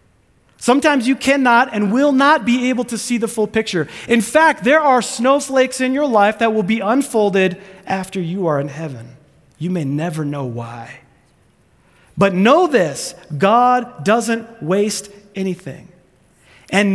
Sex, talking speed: male, 150 wpm